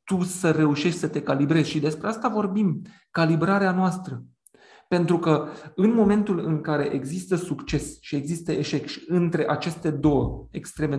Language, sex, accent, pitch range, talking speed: Romanian, male, native, 145-180 Hz, 155 wpm